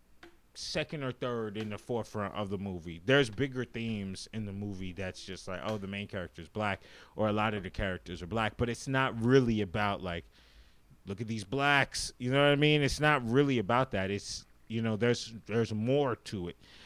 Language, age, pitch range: English, 30-49, 100-145 Hz